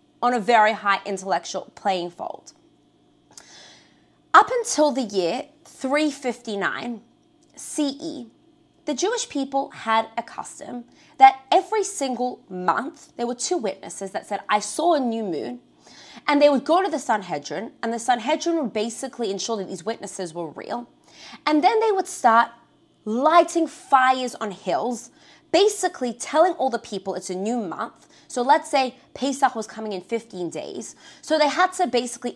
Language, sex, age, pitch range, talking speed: English, female, 20-39, 215-305 Hz, 155 wpm